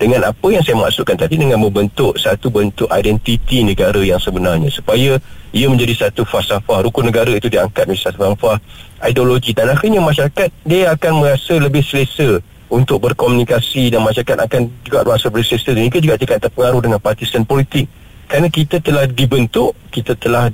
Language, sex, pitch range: Malay, male, 115-140 Hz